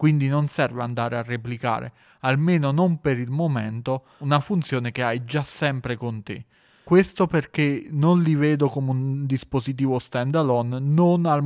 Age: 30-49